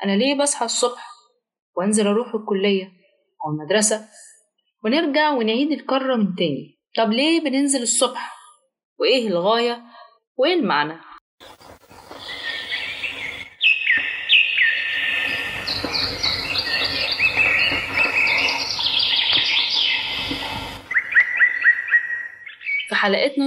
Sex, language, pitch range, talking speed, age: female, Arabic, 205-285 Hz, 60 wpm, 20-39